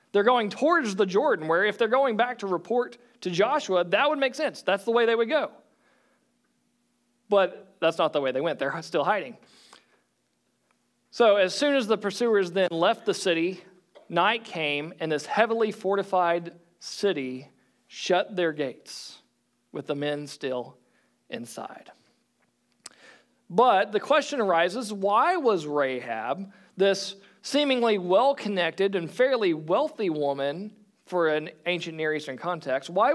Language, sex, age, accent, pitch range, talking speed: English, male, 40-59, American, 155-230 Hz, 145 wpm